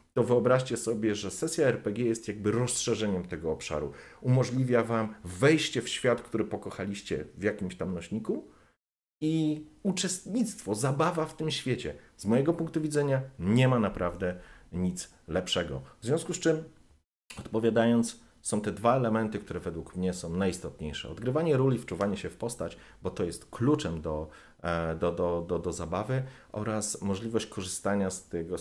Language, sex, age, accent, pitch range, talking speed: Polish, male, 40-59, native, 85-115 Hz, 150 wpm